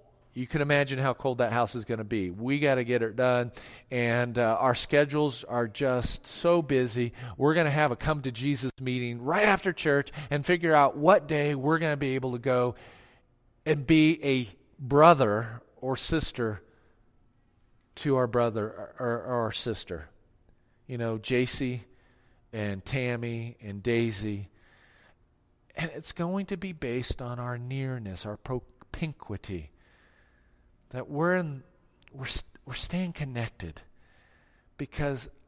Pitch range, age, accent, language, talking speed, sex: 115-145 Hz, 40-59, American, English, 150 wpm, male